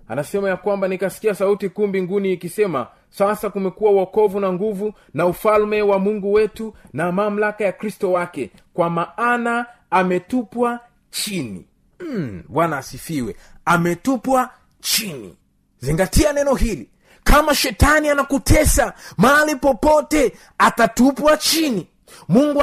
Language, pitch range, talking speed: Swahili, 185-245 Hz, 115 wpm